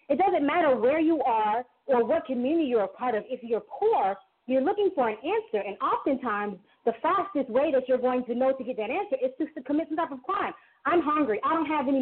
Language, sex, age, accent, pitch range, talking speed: English, female, 40-59, American, 225-310 Hz, 240 wpm